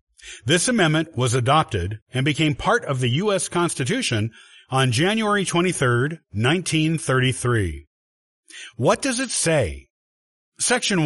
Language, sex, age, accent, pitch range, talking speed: English, male, 50-69, American, 120-175 Hz, 110 wpm